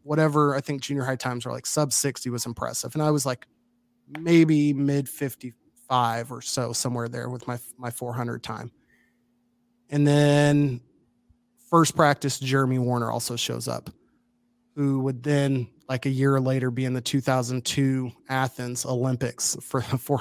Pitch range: 125-145 Hz